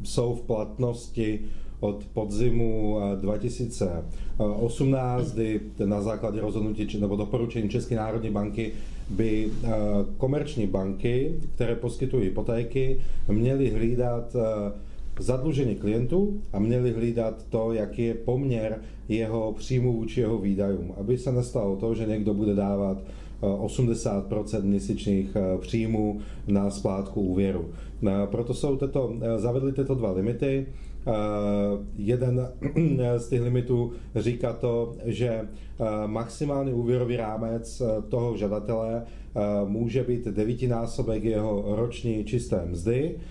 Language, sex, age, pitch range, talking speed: Czech, male, 30-49, 105-125 Hz, 110 wpm